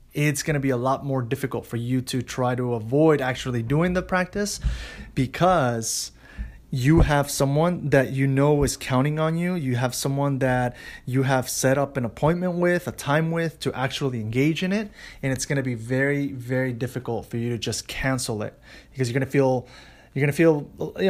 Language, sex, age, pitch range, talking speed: English, male, 30-49, 130-160 Hz, 205 wpm